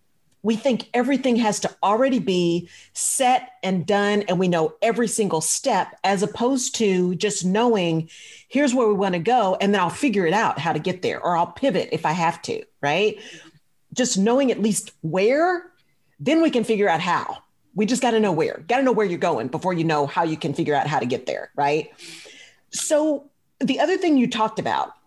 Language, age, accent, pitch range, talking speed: English, 40-59, American, 170-240 Hz, 205 wpm